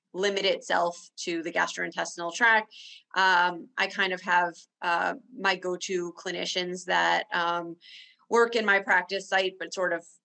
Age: 20-39